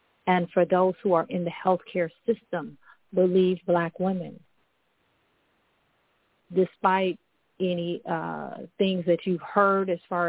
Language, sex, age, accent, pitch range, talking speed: English, female, 40-59, American, 170-185 Hz, 120 wpm